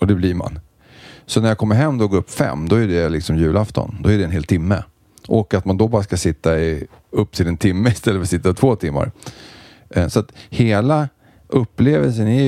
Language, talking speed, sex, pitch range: English, 230 wpm, male, 85-110 Hz